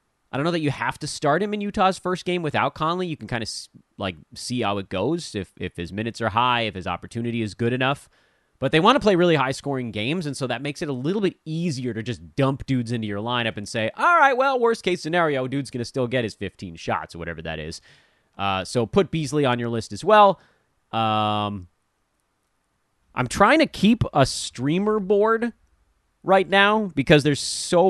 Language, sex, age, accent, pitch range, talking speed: English, male, 30-49, American, 105-175 Hz, 215 wpm